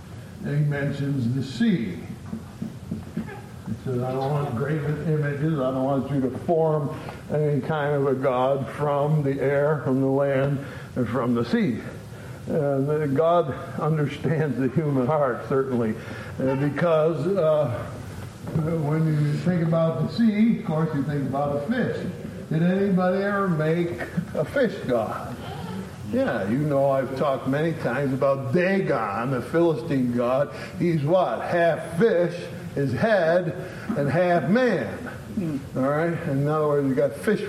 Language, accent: English, American